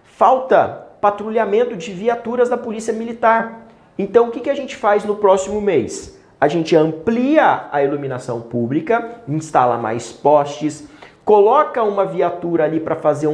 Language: Portuguese